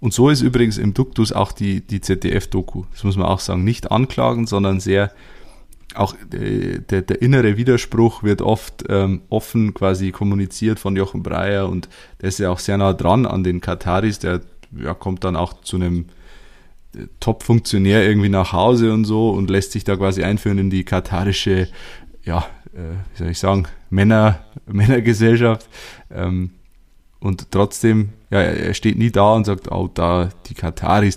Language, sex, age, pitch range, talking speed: German, male, 20-39, 90-110 Hz, 170 wpm